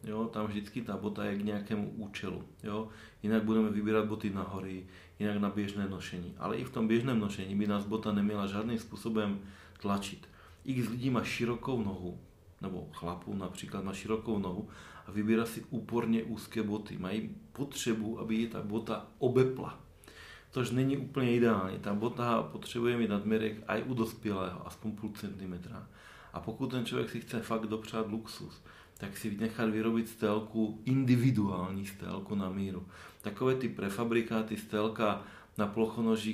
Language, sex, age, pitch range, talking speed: Czech, male, 40-59, 100-115 Hz, 160 wpm